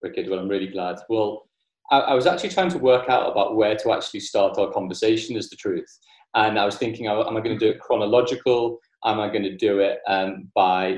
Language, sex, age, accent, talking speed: English, male, 30-49, British, 230 wpm